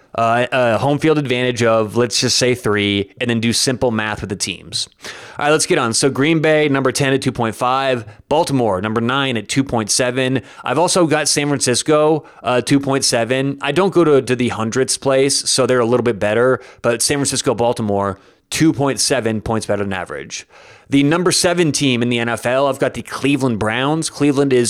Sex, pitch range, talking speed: male, 120-150 Hz, 190 wpm